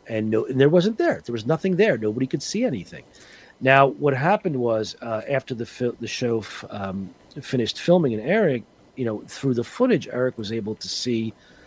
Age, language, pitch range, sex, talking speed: 40-59, English, 110-140 Hz, male, 190 wpm